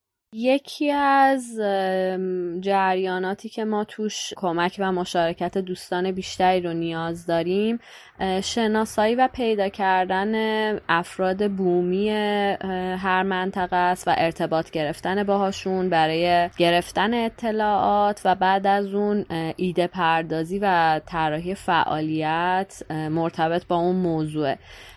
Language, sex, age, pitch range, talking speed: Persian, female, 20-39, 175-210 Hz, 105 wpm